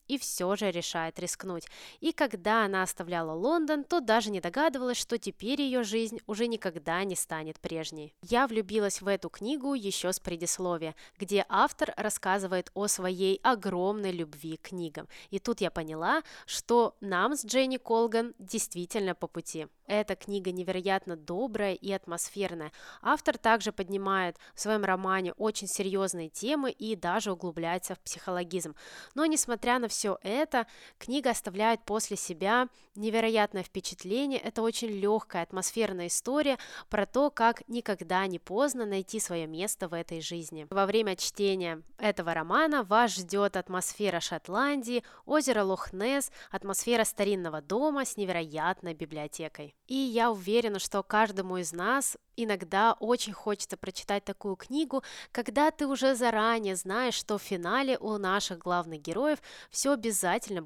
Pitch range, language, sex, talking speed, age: 180-235 Hz, Russian, female, 140 wpm, 20-39